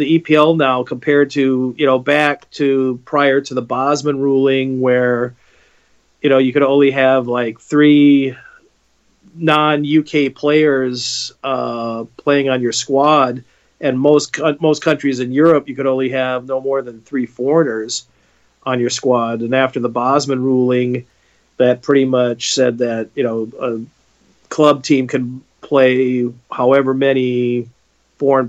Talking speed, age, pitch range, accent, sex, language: 145 wpm, 40-59, 120-140 Hz, American, male, English